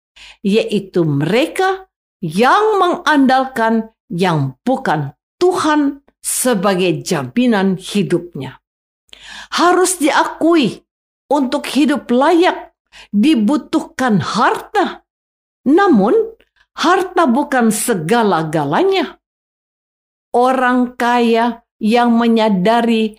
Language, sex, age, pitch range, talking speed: Indonesian, female, 50-69, 185-285 Hz, 65 wpm